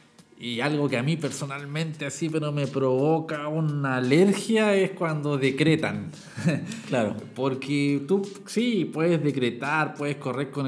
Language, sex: Spanish, male